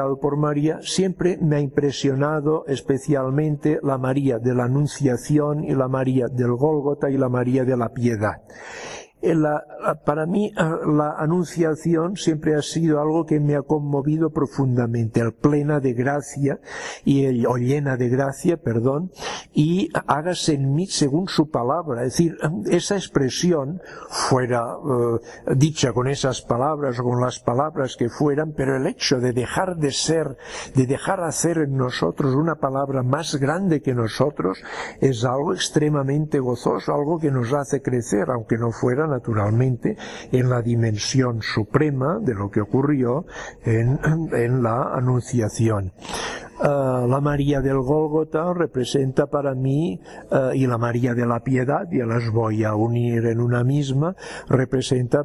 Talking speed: 150 wpm